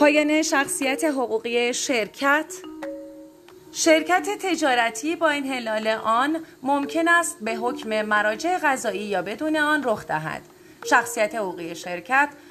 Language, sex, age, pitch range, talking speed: Persian, female, 30-49, 205-290 Hz, 115 wpm